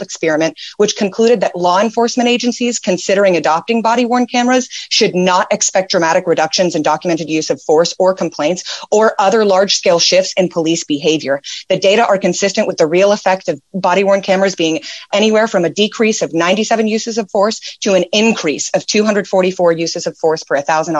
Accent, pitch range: American, 170-215 Hz